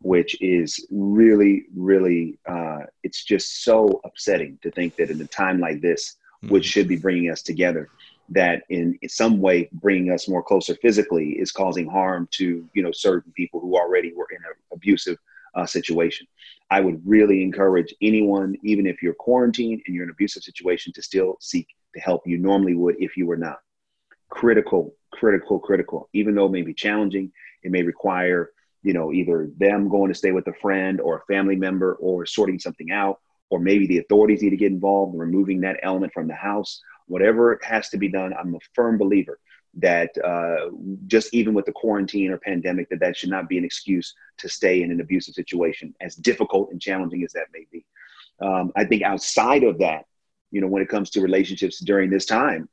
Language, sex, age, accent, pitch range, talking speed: English, male, 30-49, American, 90-100 Hz, 200 wpm